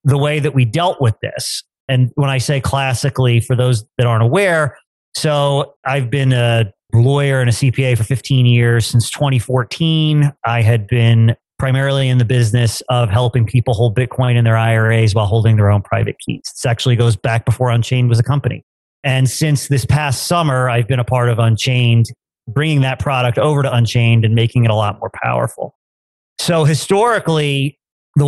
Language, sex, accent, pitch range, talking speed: English, male, American, 120-140 Hz, 185 wpm